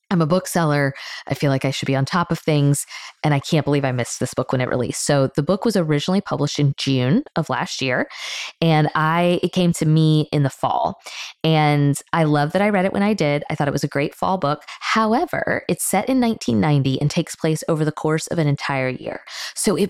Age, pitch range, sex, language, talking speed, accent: 20-39, 140-175 Hz, female, English, 240 wpm, American